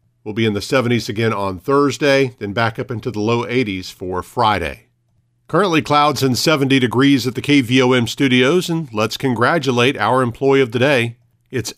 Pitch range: 115-135 Hz